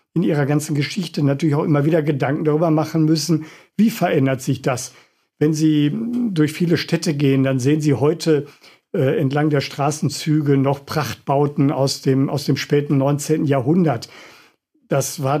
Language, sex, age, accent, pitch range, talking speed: German, male, 50-69, German, 140-160 Hz, 155 wpm